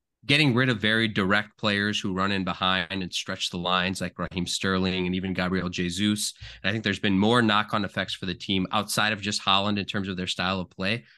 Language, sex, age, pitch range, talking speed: English, male, 20-39, 100-130 Hz, 230 wpm